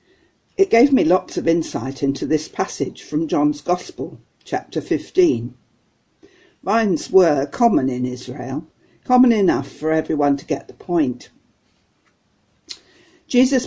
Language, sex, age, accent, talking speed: English, female, 60-79, British, 125 wpm